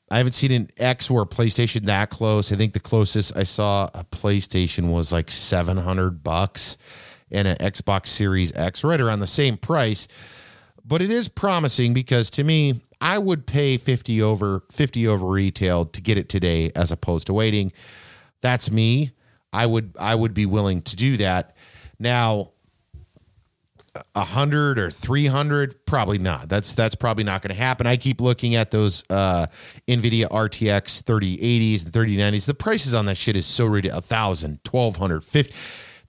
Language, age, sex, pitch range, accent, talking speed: English, 40-59, male, 100-125 Hz, American, 175 wpm